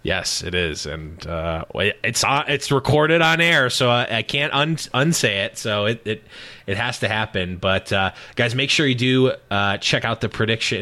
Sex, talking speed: male, 205 wpm